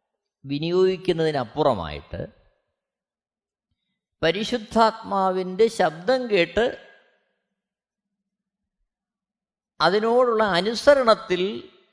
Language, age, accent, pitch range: Malayalam, 20-39, native, 135-205 Hz